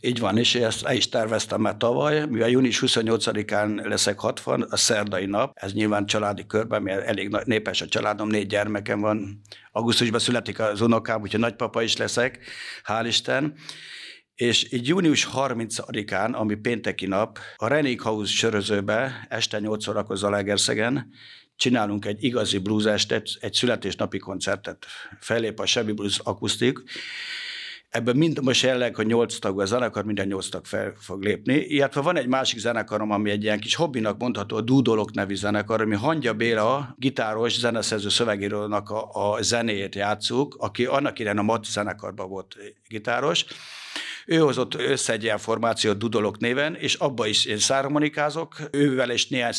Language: Hungarian